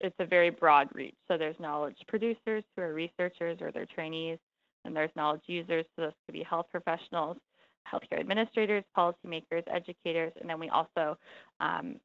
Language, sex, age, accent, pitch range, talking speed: English, female, 20-39, American, 160-185 Hz, 170 wpm